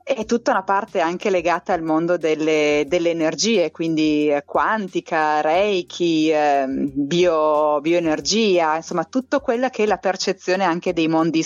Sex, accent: female, native